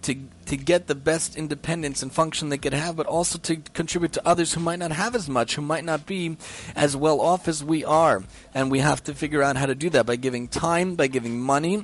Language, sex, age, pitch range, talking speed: English, male, 30-49, 140-165 Hz, 250 wpm